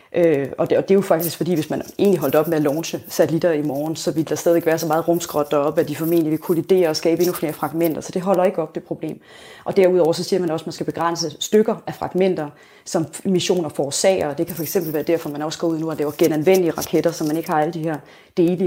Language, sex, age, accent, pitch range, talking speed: Danish, female, 30-49, native, 155-180 Hz, 285 wpm